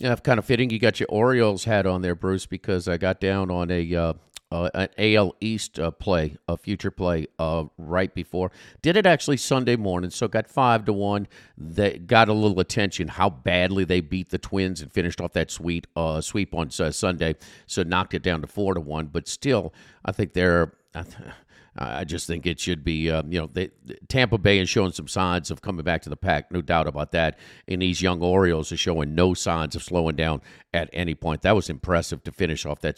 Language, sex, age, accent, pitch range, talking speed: English, male, 50-69, American, 85-110 Hz, 225 wpm